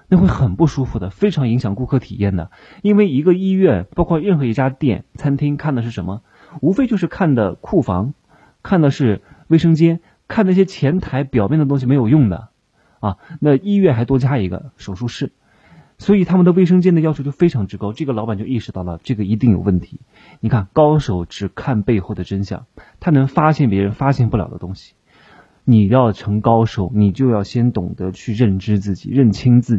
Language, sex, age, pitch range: Chinese, male, 30-49, 105-145 Hz